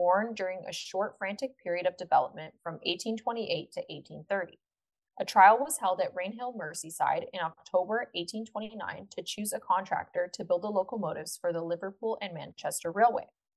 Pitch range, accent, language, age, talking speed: 175-225 Hz, American, English, 20-39, 160 wpm